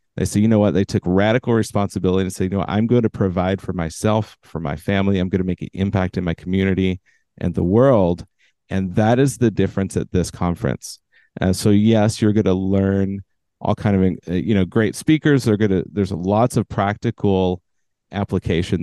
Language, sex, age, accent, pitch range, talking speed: English, male, 40-59, American, 90-110 Hz, 205 wpm